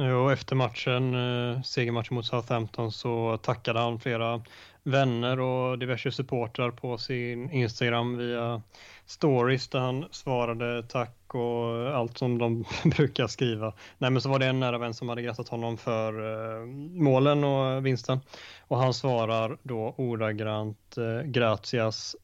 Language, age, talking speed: Swedish, 20-39, 145 wpm